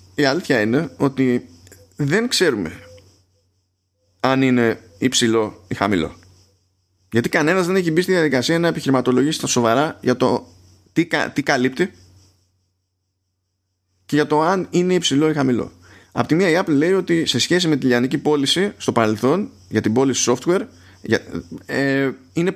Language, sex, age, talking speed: Greek, male, 20-39, 145 wpm